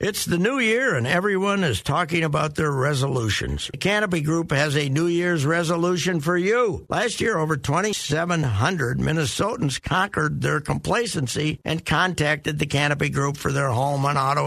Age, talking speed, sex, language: 60-79, 160 wpm, male, English